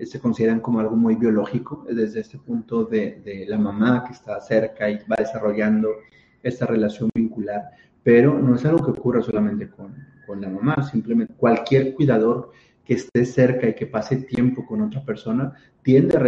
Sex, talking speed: male, 175 wpm